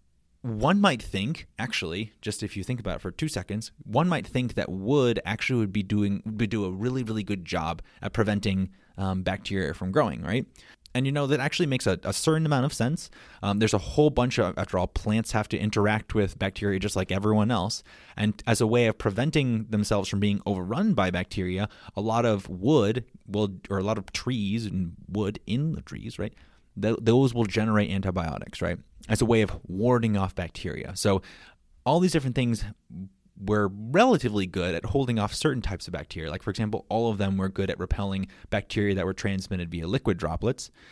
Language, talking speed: English, 200 wpm